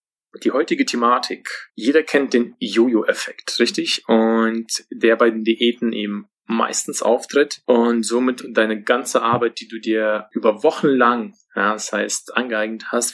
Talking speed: 140 wpm